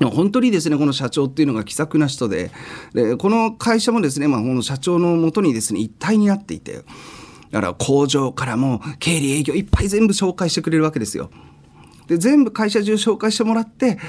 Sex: male